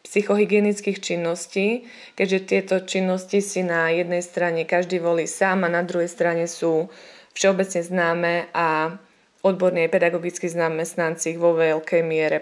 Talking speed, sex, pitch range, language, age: 130 wpm, female, 175-210 Hz, Slovak, 20-39